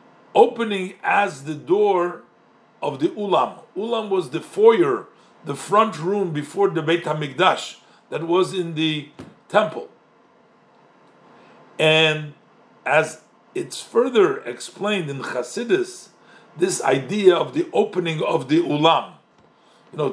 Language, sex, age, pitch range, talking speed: English, male, 50-69, 155-230 Hz, 120 wpm